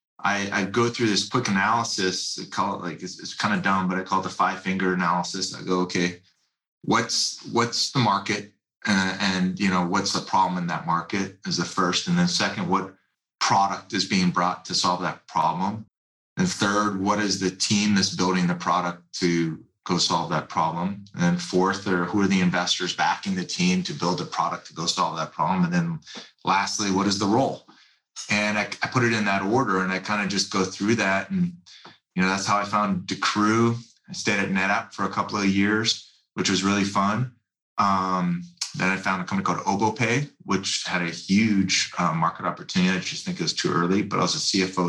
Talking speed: 215 wpm